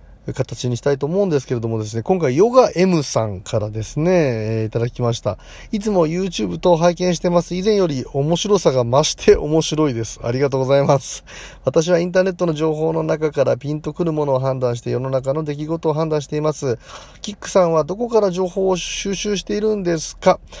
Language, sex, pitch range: Japanese, male, 120-175 Hz